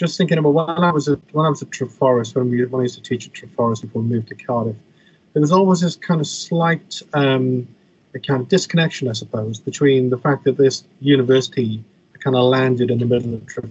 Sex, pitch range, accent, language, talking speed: male, 120-150 Hz, British, English, 230 wpm